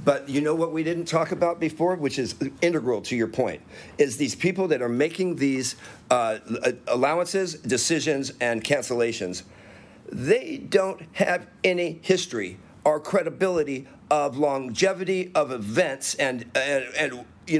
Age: 50-69